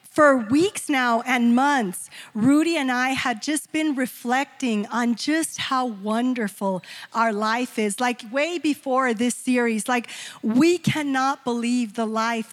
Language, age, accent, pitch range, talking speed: English, 40-59, American, 235-285 Hz, 145 wpm